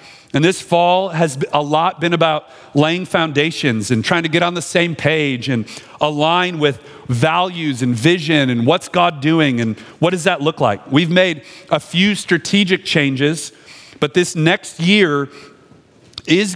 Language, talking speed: English, 165 wpm